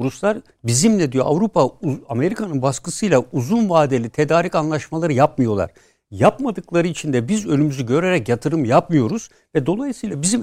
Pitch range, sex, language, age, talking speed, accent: 130-175 Hz, male, Turkish, 60-79, 125 wpm, native